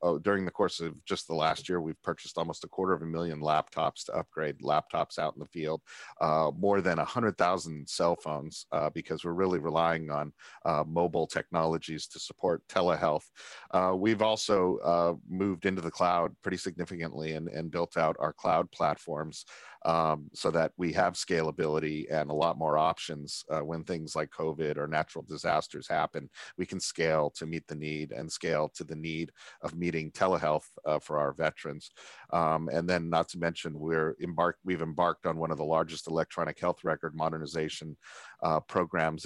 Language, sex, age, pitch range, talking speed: English, male, 40-59, 80-90 Hz, 180 wpm